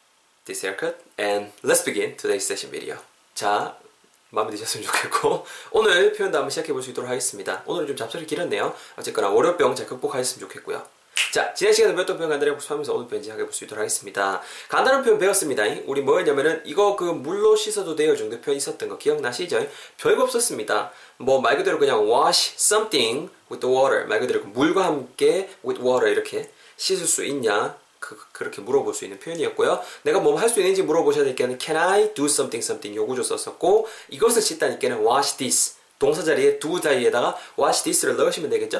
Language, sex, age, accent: Korean, male, 20-39, native